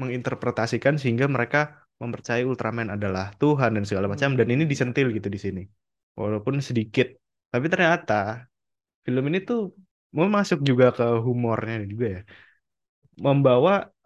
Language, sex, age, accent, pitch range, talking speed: Indonesian, male, 20-39, native, 110-140 Hz, 130 wpm